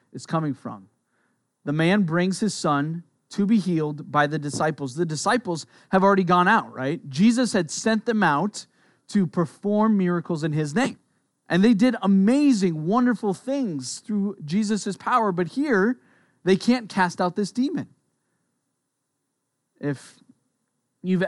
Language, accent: English, American